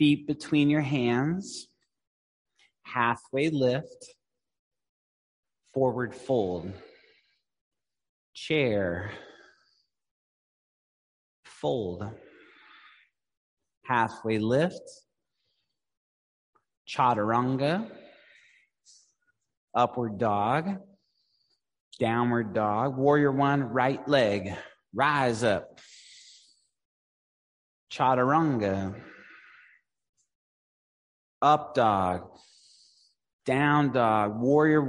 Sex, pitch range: male, 110-150 Hz